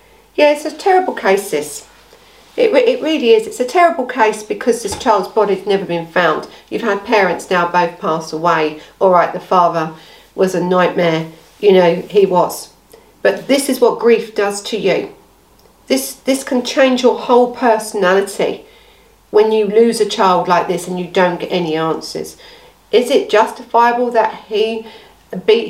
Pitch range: 200-265 Hz